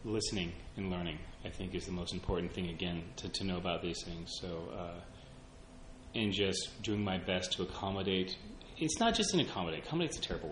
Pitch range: 90-105 Hz